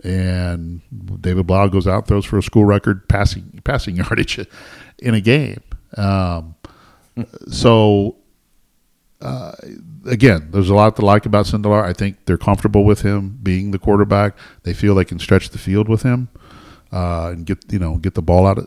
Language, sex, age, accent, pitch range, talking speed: English, male, 50-69, American, 90-105 Hz, 175 wpm